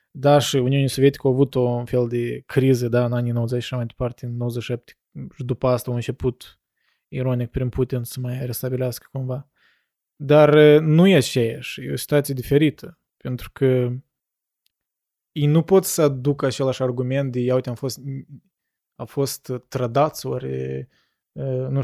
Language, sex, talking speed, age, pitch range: Romanian, male, 155 wpm, 20-39, 125-145 Hz